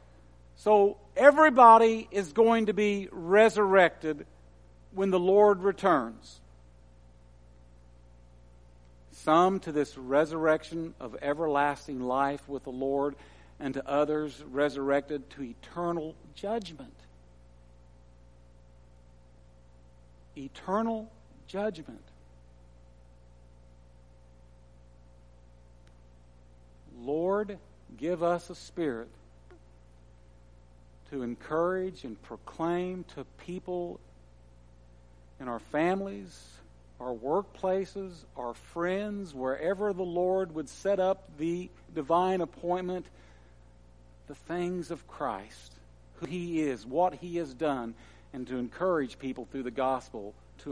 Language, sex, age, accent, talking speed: English, male, 60-79, American, 90 wpm